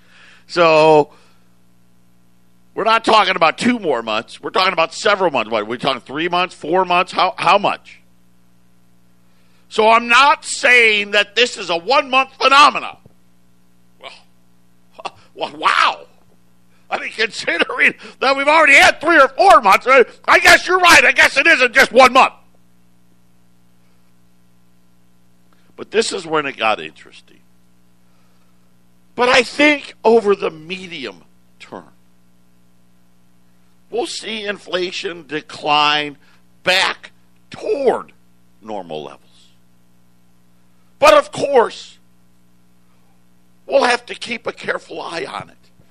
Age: 50-69